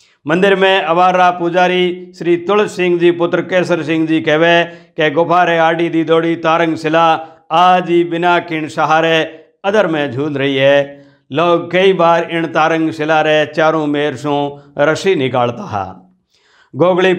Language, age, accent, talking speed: Hindi, 50-69, native, 145 wpm